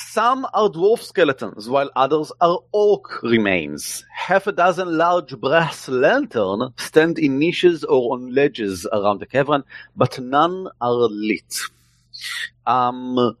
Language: Hebrew